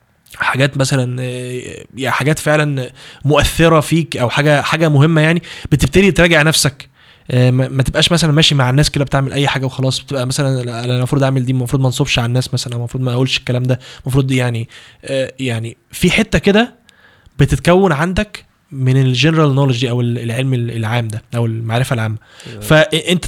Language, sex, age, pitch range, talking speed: Arabic, male, 20-39, 130-155 Hz, 160 wpm